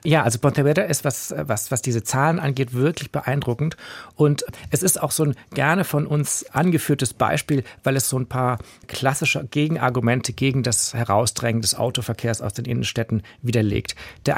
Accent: German